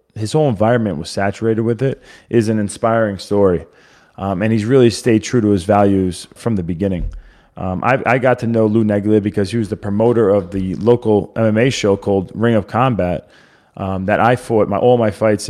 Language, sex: English, male